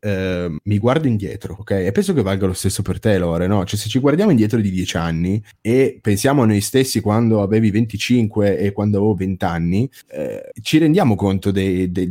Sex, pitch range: male, 95-120 Hz